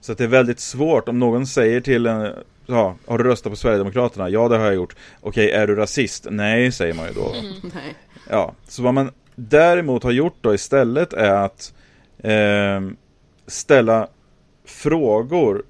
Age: 30-49